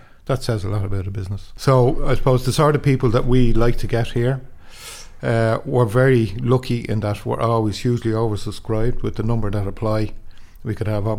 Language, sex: English, male